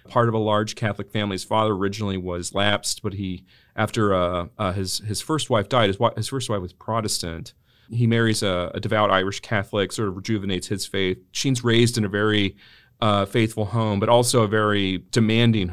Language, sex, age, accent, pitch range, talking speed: English, male, 40-59, American, 100-120 Hz, 200 wpm